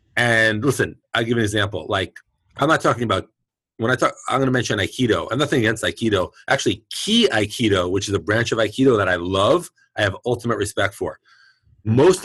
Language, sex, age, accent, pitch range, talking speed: English, male, 30-49, American, 100-115 Hz, 195 wpm